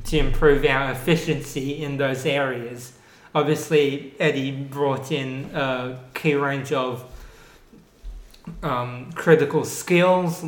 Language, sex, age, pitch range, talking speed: English, male, 20-39, 130-155 Hz, 105 wpm